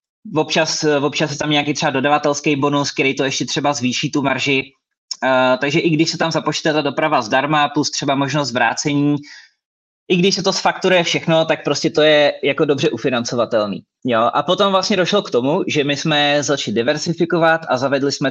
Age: 20-39